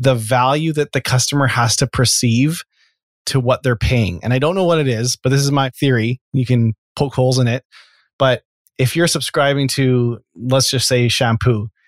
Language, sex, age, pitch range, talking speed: English, male, 30-49, 115-135 Hz, 195 wpm